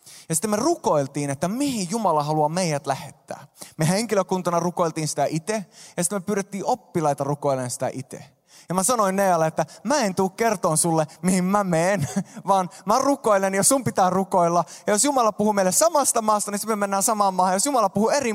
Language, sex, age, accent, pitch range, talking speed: Finnish, male, 20-39, native, 150-200 Hz, 200 wpm